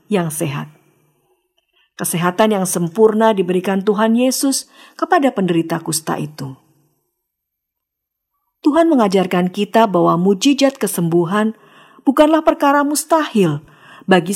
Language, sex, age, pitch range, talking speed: Indonesian, female, 50-69, 165-235 Hz, 90 wpm